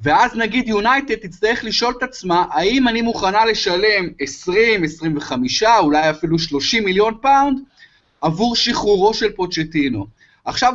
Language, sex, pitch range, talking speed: Hebrew, male, 160-230 Hz, 130 wpm